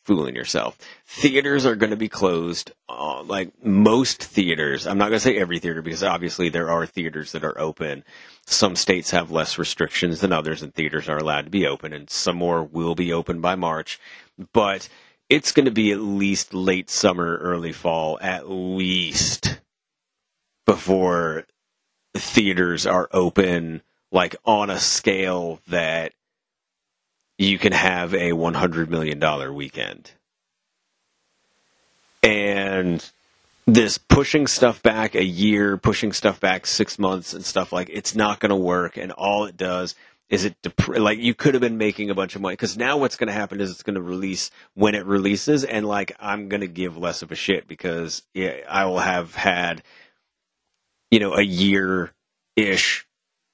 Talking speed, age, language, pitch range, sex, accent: 170 wpm, 30-49, English, 85-105 Hz, male, American